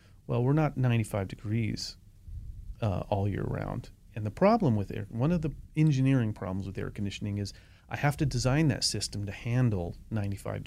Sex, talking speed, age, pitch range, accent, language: male, 180 wpm, 40-59, 100-125 Hz, American, English